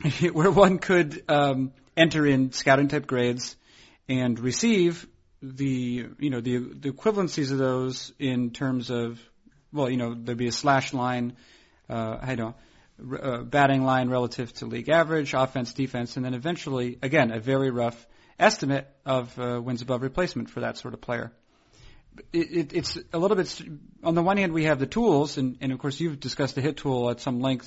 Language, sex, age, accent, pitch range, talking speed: English, male, 40-59, American, 125-155 Hz, 190 wpm